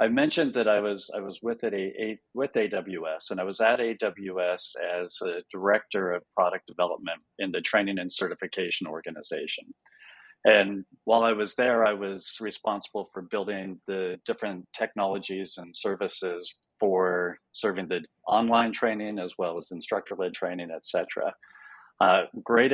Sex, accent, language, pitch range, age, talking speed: male, American, English, 95-115 Hz, 50-69, 155 wpm